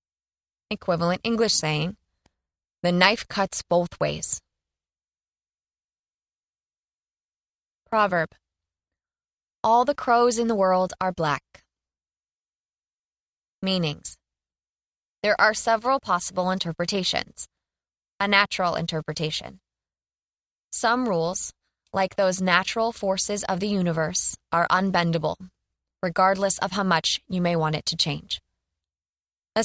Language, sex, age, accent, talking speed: English, female, 20-39, American, 95 wpm